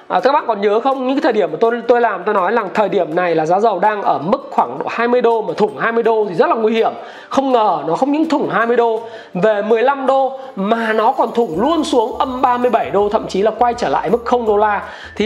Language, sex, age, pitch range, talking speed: Vietnamese, male, 20-39, 210-255 Hz, 270 wpm